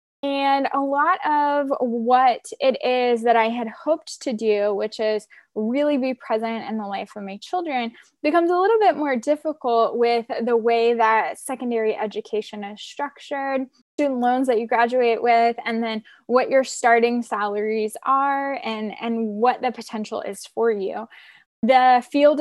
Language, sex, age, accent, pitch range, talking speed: English, female, 10-29, American, 220-270 Hz, 165 wpm